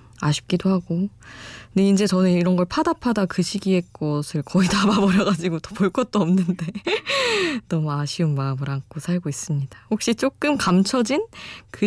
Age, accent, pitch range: 20-39, native, 140-195 Hz